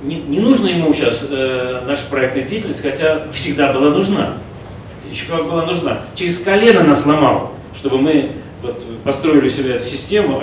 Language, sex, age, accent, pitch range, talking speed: Russian, male, 40-59, native, 115-155 Hz, 165 wpm